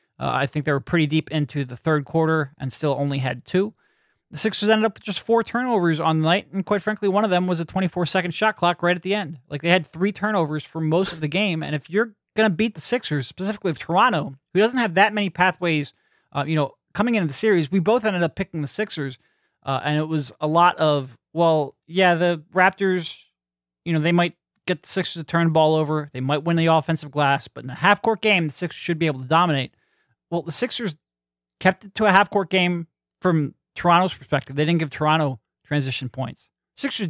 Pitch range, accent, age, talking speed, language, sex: 150-195 Hz, American, 30-49, 230 wpm, English, male